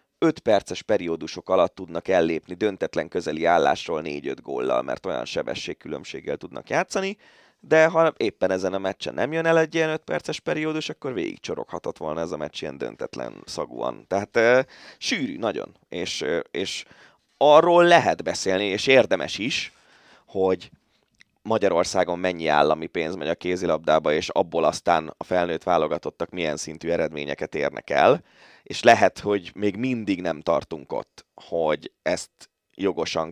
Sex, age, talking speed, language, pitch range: male, 20-39, 150 wpm, Hungarian, 80-110 Hz